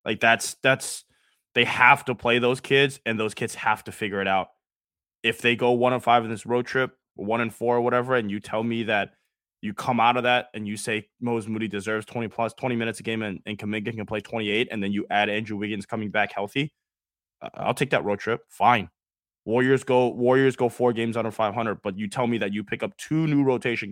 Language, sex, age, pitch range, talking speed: English, male, 20-39, 105-125 Hz, 240 wpm